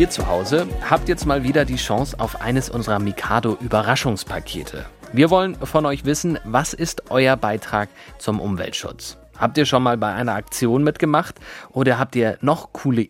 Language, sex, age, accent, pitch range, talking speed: German, male, 30-49, German, 105-145 Hz, 175 wpm